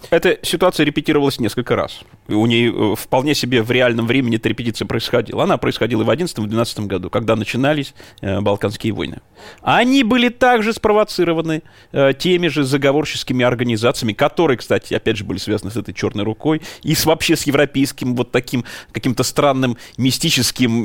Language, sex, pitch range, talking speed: Russian, male, 115-150 Hz, 165 wpm